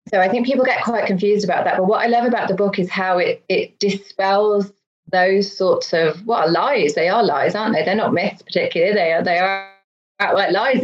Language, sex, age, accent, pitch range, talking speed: English, female, 30-49, British, 175-220 Hz, 220 wpm